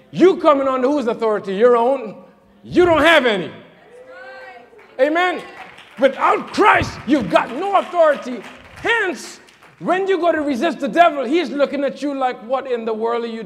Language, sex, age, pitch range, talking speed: English, male, 50-69, 205-285 Hz, 165 wpm